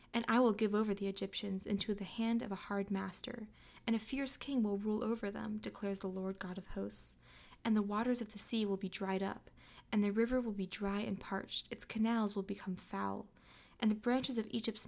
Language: English